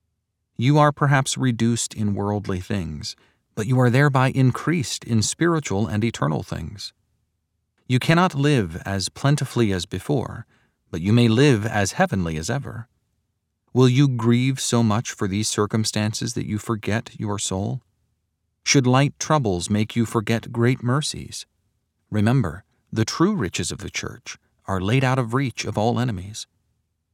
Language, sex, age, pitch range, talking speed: English, male, 40-59, 100-125 Hz, 150 wpm